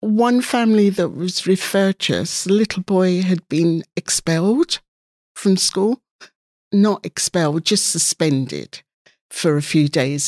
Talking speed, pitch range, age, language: 130 wpm, 165-195 Hz, 60-79, English